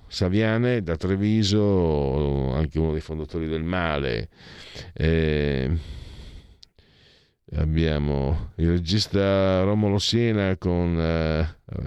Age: 50-69